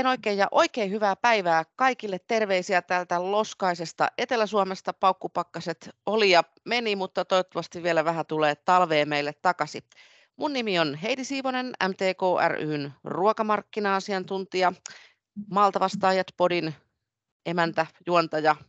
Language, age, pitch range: Finnish, 30-49, 165-205 Hz